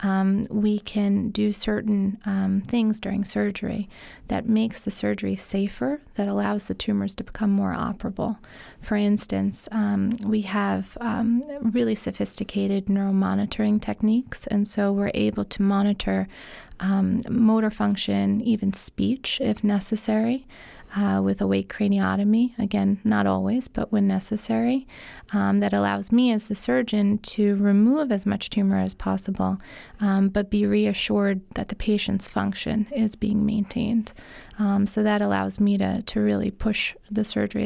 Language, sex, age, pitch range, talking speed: English, female, 30-49, 200-220 Hz, 145 wpm